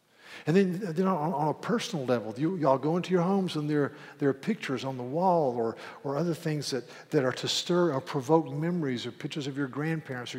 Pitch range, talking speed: 130-165 Hz, 230 wpm